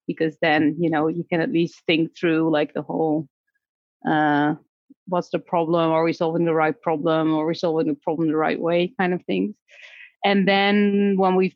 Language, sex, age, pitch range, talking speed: English, female, 30-49, 160-185 Hz, 195 wpm